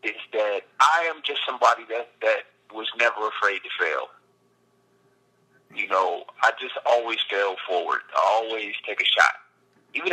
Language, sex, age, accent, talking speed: English, male, 30-49, American, 155 wpm